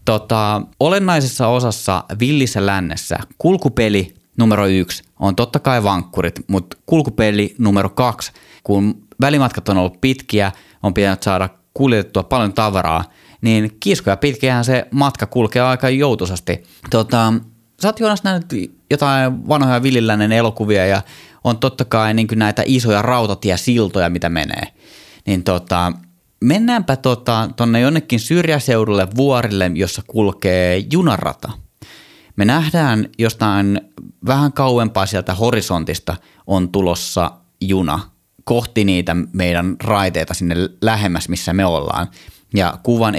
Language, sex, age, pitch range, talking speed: Finnish, male, 30-49, 95-120 Hz, 120 wpm